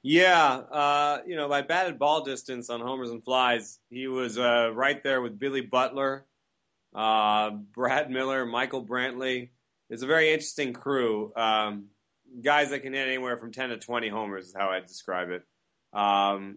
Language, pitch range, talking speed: English, 105-130 Hz, 170 wpm